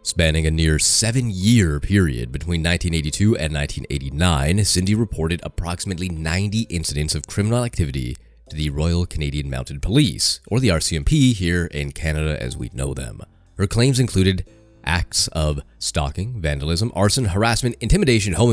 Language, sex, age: English, male, 30-49